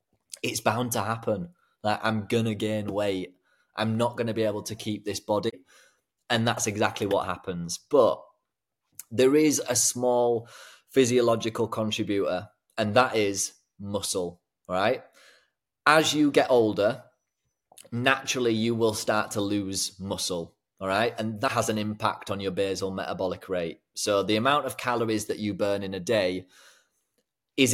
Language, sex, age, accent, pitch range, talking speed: English, male, 30-49, British, 100-120 Hz, 155 wpm